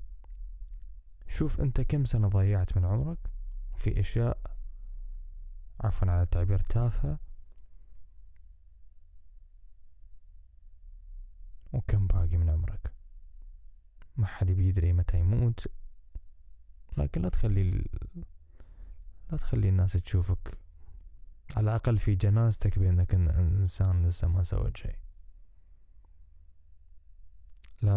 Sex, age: male, 20-39